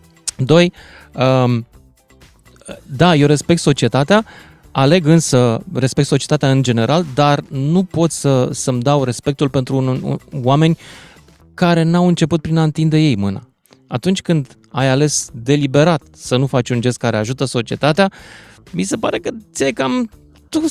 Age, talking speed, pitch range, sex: 20-39, 145 wpm, 125-175 Hz, male